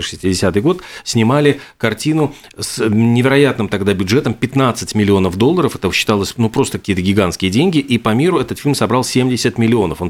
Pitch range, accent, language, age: 105-125 Hz, native, Russian, 40-59